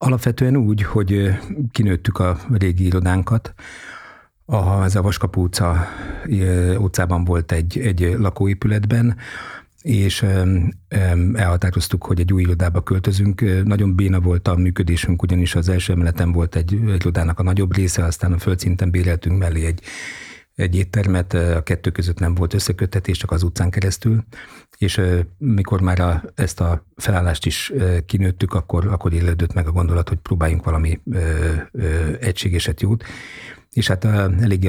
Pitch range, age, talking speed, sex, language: 85-100 Hz, 60-79, 135 wpm, male, Hungarian